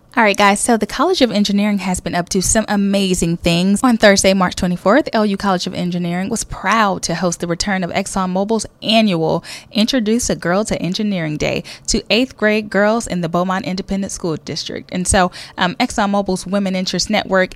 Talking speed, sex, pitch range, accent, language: 190 wpm, female, 170-210 Hz, American, English